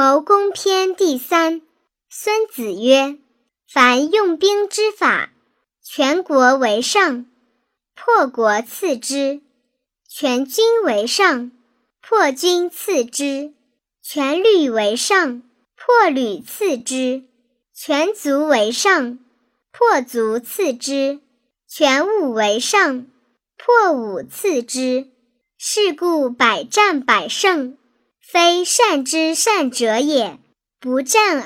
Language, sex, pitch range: Chinese, male, 250-375 Hz